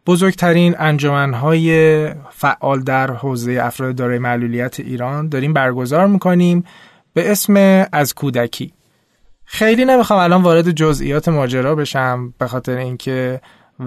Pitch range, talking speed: 130-185 Hz, 115 wpm